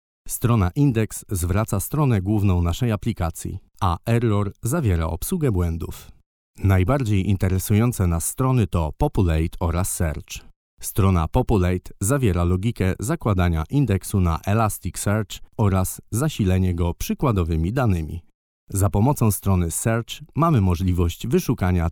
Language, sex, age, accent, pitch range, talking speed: Polish, male, 40-59, native, 85-110 Hz, 110 wpm